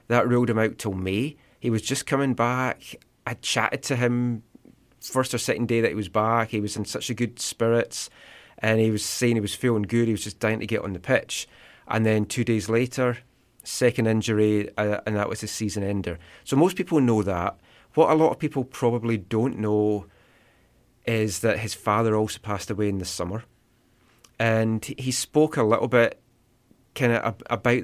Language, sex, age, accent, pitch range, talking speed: English, male, 30-49, British, 105-120 Hz, 200 wpm